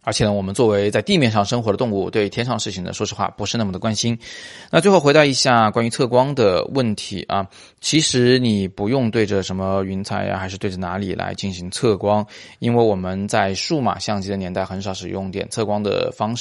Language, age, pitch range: Chinese, 20-39, 100-125 Hz